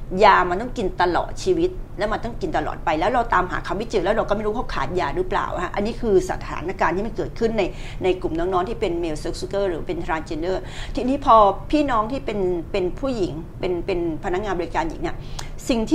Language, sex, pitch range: Thai, female, 180-280 Hz